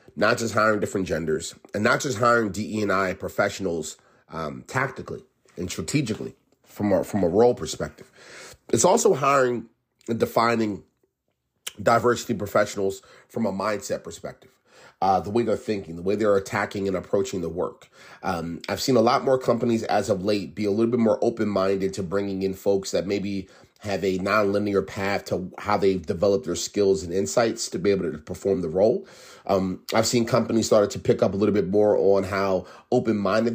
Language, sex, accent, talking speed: English, male, American, 180 wpm